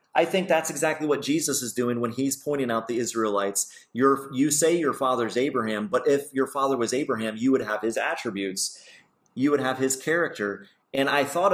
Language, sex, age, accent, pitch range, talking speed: English, male, 30-49, American, 105-135 Hz, 200 wpm